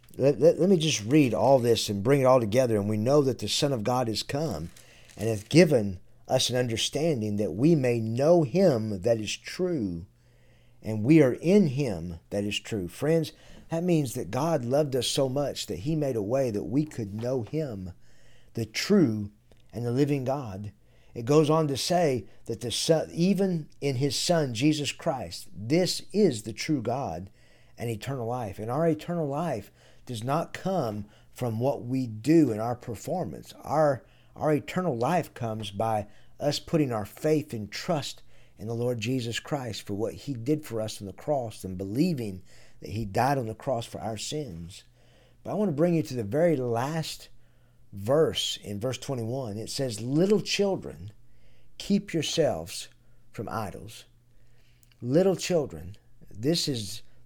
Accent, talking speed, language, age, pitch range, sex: American, 175 wpm, English, 50-69, 110-155 Hz, male